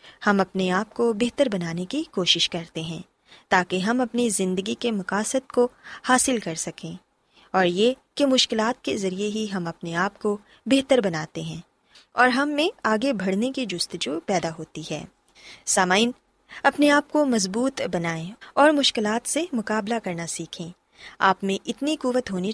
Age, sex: 20-39, female